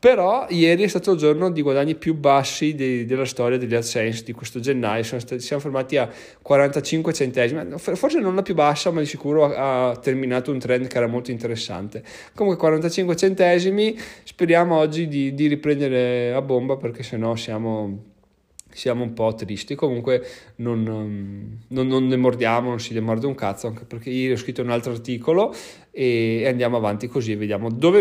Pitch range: 120-150 Hz